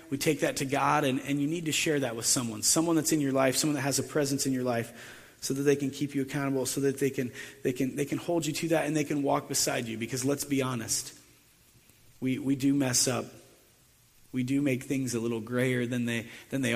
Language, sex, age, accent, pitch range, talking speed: English, male, 30-49, American, 120-140 Hz, 260 wpm